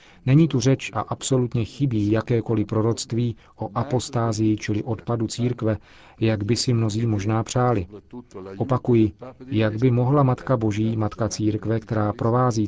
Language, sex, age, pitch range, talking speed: Czech, male, 40-59, 105-120 Hz, 135 wpm